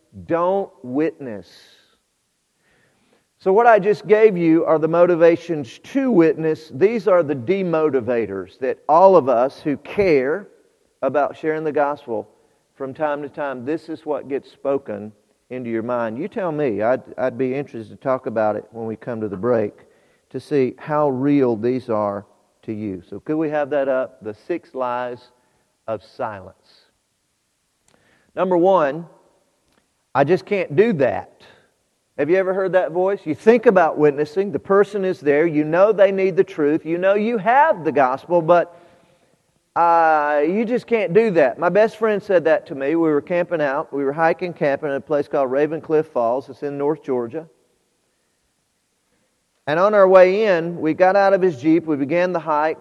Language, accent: English, American